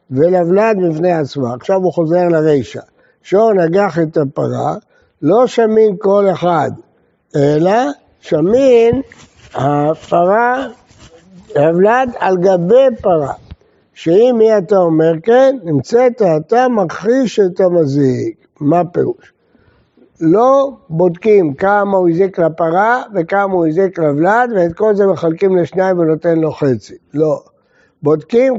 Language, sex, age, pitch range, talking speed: Hebrew, male, 60-79, 165-215 Hz, 115 wpm